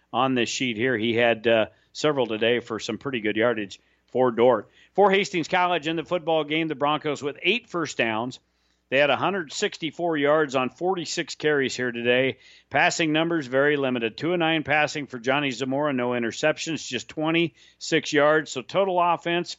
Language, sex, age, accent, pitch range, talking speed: English, male, 50-69, American, 120-160 Hz, 170 wpm